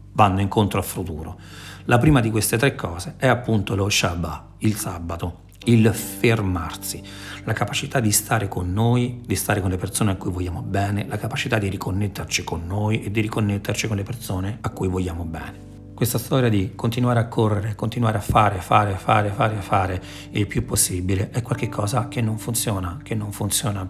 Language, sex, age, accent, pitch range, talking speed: Italian, male, 40-59, native, 95-120 Hz, 185 wpm